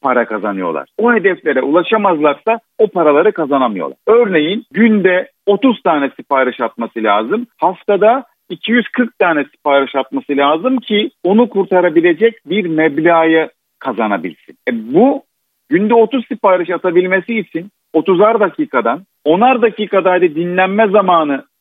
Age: 50-69